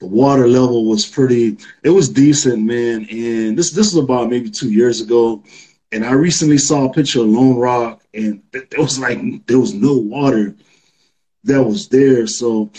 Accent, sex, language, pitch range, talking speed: American, male, English, 120-145 Hz, 190 wpm